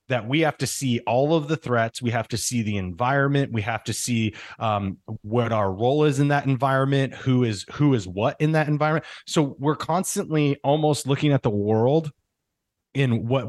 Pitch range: 115-140 Hz